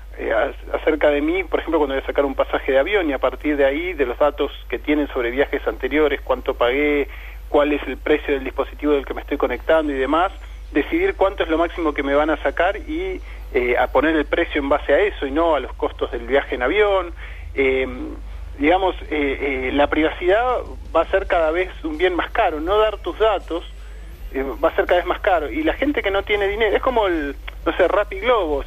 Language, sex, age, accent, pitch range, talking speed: Spanish, male, 40-59, Argentinian, 145-210 Hz, 235 wpm